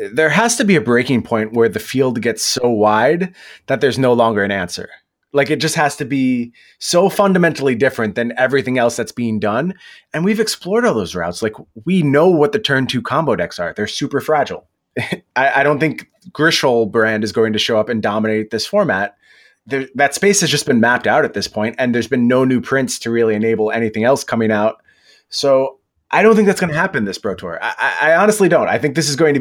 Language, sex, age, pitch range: English, male, 30-49, 115-155 Hz